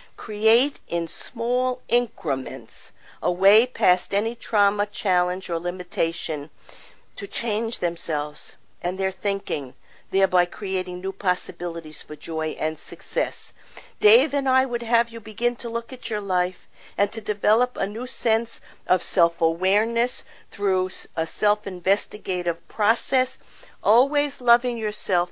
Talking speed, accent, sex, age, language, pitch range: 125 wpm, American, female, 50-69, English, 175-230 Hz